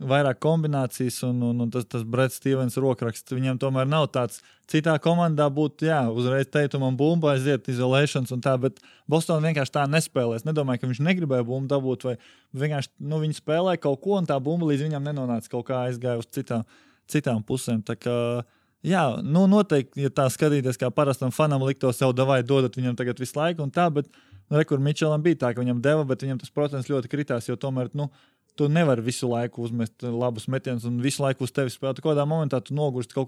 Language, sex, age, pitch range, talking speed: English, male, 20-39, 125-150 Hz, 200 wpm